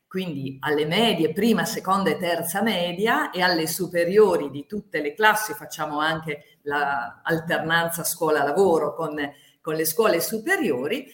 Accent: native